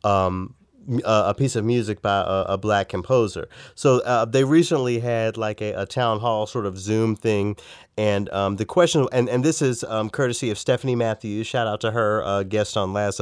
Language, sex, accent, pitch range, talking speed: English, male, American, 105-130 Hz, 205 wpm